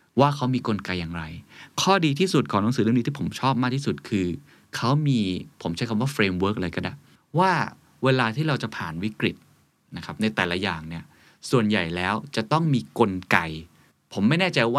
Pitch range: 90-125 Hz